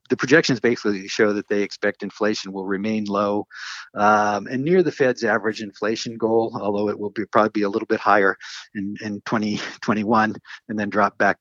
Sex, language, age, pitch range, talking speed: male, English, 50-69, 100-115 Hz, 180 wpm